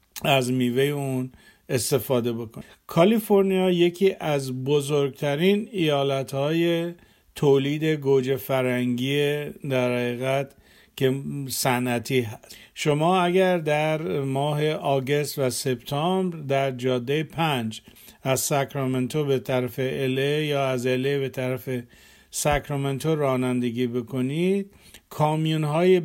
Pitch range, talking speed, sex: 130-155 Hz, 95 wpm, male